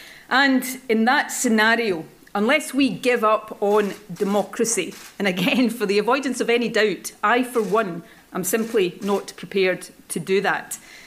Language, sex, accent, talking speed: English, female, British, 150 wpm